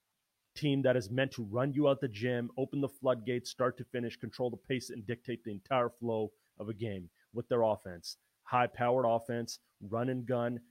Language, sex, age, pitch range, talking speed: English, male, 30-49, 115-130 Hz, 195 wpm